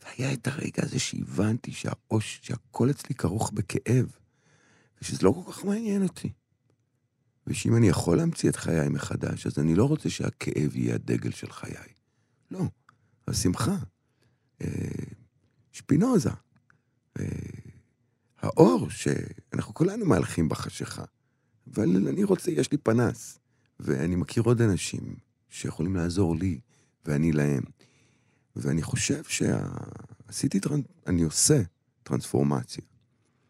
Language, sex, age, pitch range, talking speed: Hebrew, male, 50-69, 85-130 Hz, 110 wpm